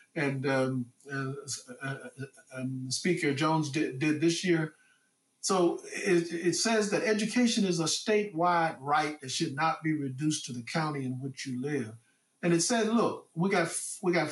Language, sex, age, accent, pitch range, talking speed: English, male, 50-69, American, 145-200 Hz, 180 wpm